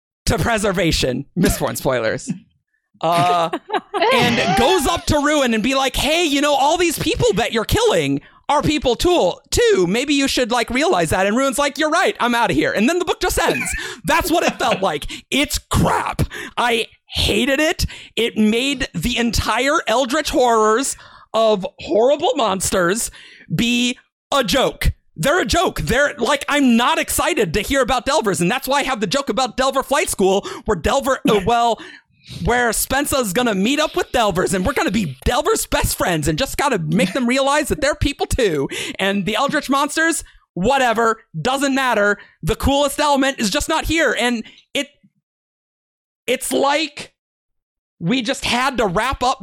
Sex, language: male, English